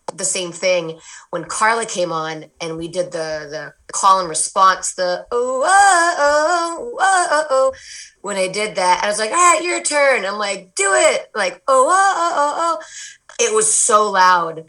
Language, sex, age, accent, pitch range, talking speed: English, female, 30-49, American, 175-265 Hz, 195 wpm